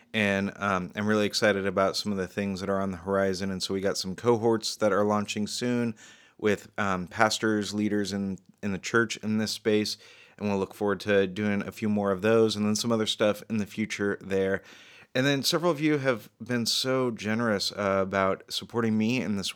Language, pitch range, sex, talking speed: English, 100-115 Hz, male, 220 wpm